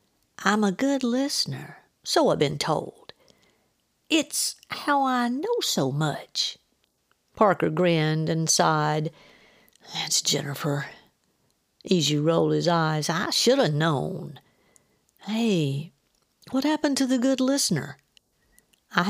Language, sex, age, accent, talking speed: English, female, 60-79, American, 115 wpm